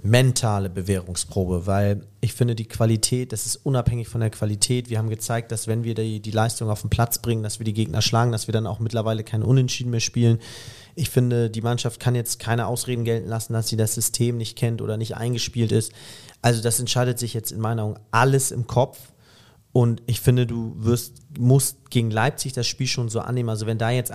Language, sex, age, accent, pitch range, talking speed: German, male, 40-59, German, 110-125 Hz, 220 wpm